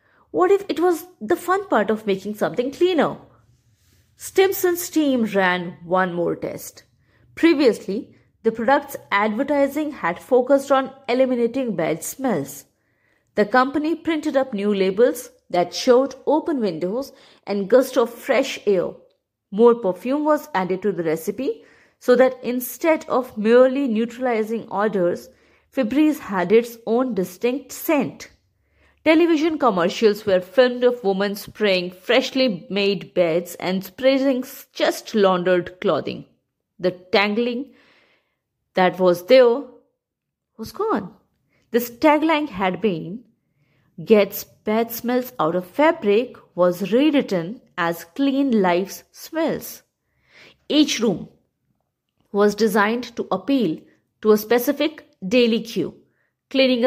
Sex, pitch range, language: female, 190-270 Hz, English